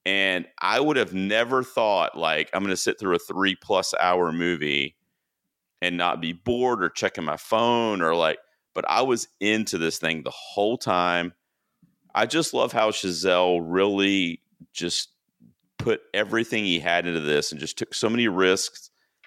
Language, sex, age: English, male, 40-59